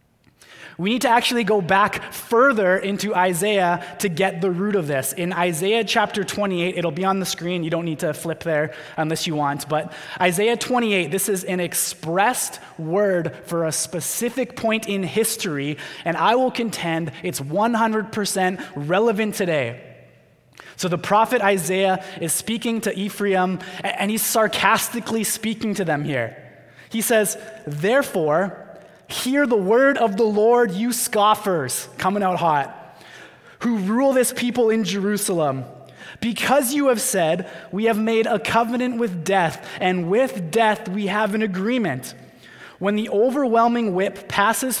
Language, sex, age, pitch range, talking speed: English, male, 20-39, 165-220 Hz, 150 wpm